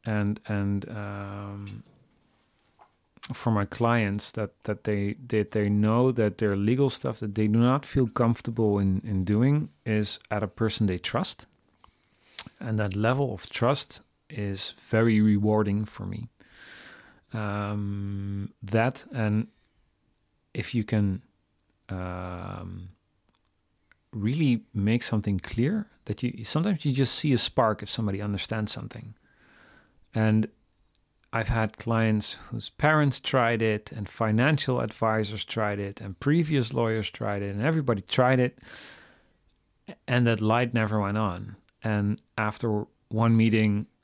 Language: Dutch